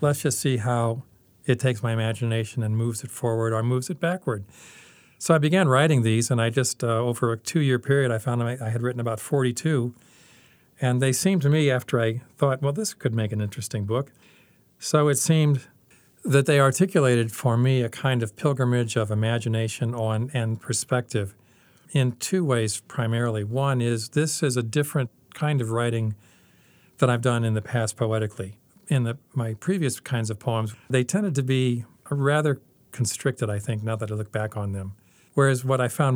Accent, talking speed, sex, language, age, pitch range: American, 190 wpm, male, English, 40-59, 110-130 Hz